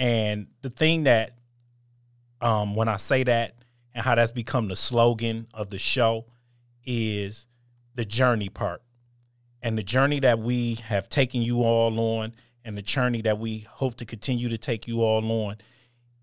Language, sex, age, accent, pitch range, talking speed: English, male, 30-49, American, 110-120 Hz, 165 wpm